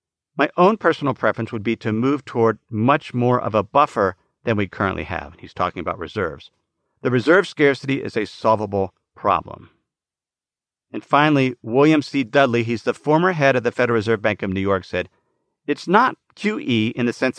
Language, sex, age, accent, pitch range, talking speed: English, male, 50-69, American, 115-170 Hz, 185 wpm